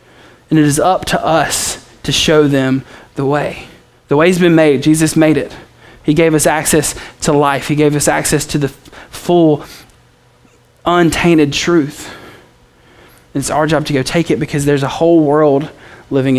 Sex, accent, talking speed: male, American, 175 wpm